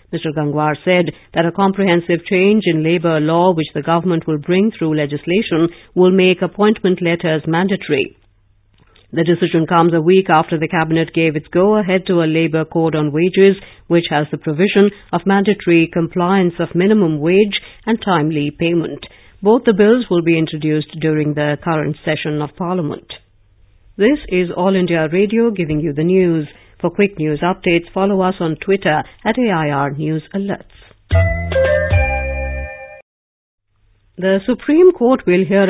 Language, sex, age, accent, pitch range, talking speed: English, female, 50-69, Indian, 155-185 Hz, 150 wpm